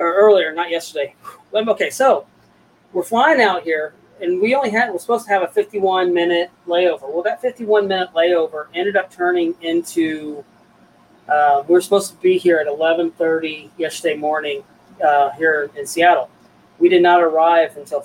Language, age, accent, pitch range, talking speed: English, 40-59, American, 160-200 Hz, 165 wpm